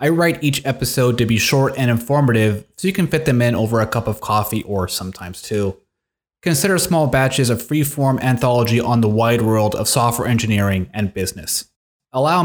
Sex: male